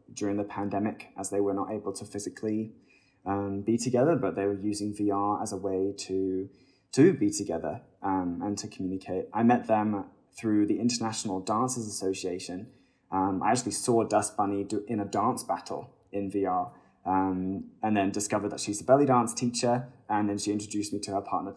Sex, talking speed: male, 190 wpm